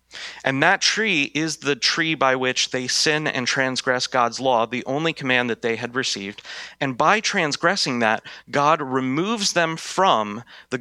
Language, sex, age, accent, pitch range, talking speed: English, male, 30-49, American, 125-155 Hz, 165 wpm